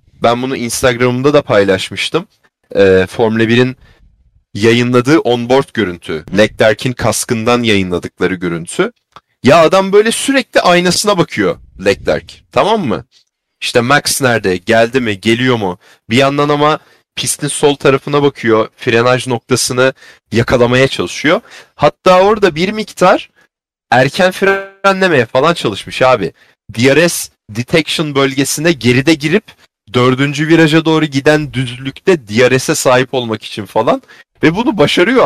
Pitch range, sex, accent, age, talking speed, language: 115-165 Hz, male, native, 30-49, 115 wpm, Turkish